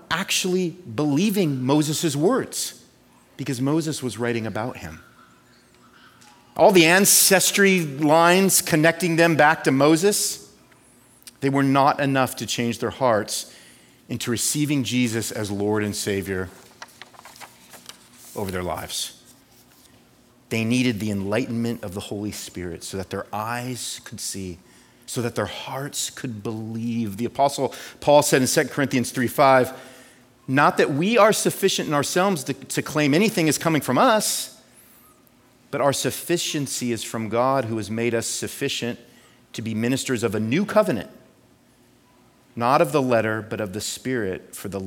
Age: 40-59